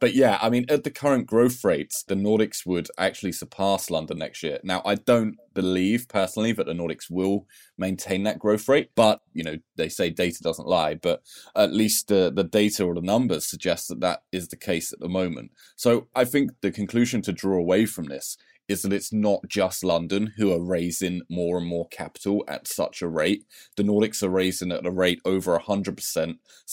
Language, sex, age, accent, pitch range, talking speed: English, male, 20-39, British, 90-110 Hz, 205 wpm